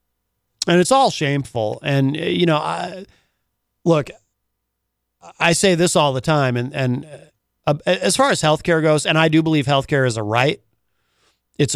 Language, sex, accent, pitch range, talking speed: English, male, American, 125-160 Hz, 170 wpm